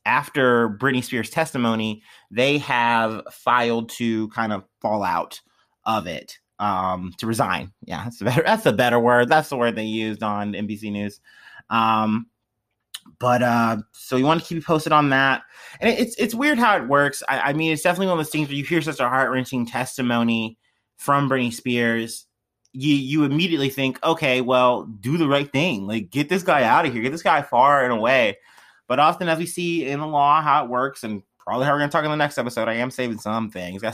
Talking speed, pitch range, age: 215 wpm, 115-150 Hz, 30-49